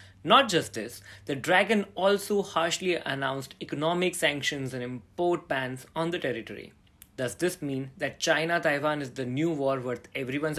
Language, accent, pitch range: English, Indian, 125-170 Hz